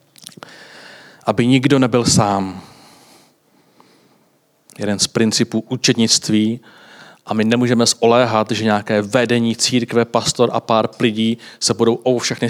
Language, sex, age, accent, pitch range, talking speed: Czech, male, 40-59, native, 115-135 Hz, 115 wpm